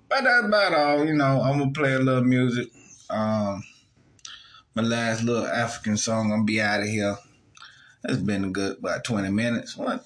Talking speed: 215 wpm